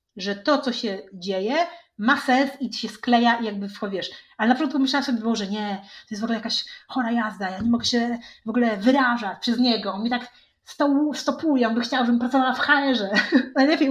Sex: female